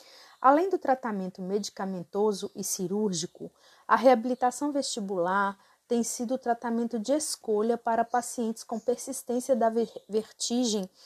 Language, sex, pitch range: Portuguese, female, 200-255 Hz